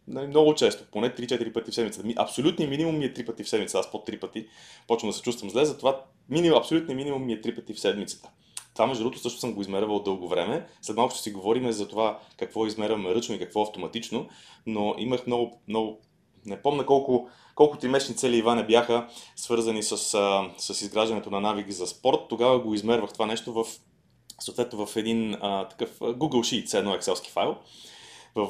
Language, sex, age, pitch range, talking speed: Bulgarian, male, 30-49, 110-140 Hz, 200 wpm